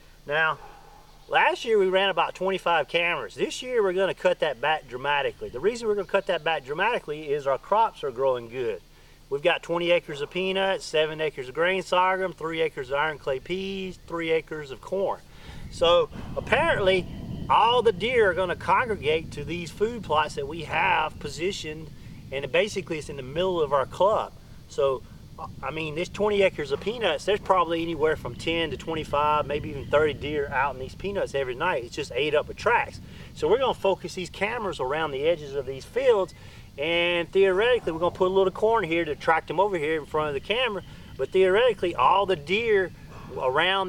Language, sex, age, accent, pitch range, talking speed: English, male, 40-59, American, 155-210 Hz, 200 wpm